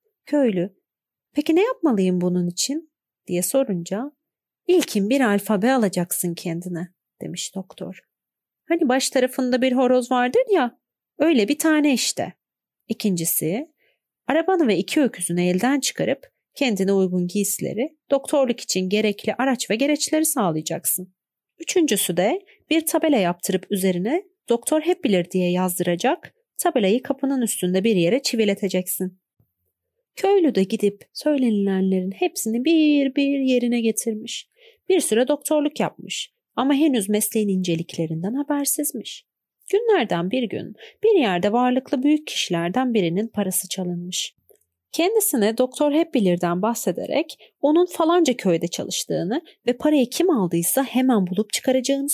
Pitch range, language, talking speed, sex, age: 185-295 Hz, Turkish, 120 wpm, female, 40-59